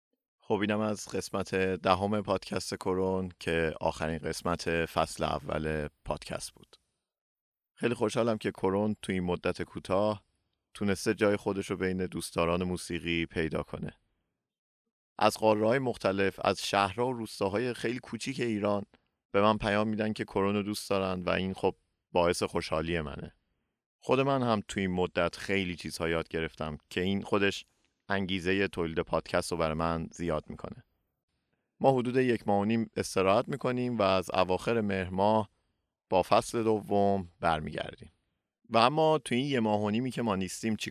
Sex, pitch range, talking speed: male, 90-115 Hz, 150 wpm